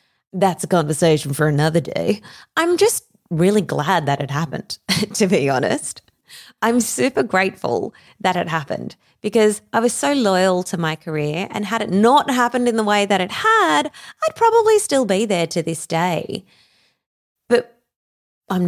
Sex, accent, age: female, Australian, 20-39